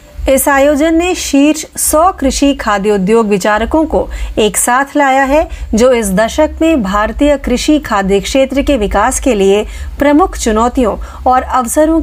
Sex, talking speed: female, 145 wpm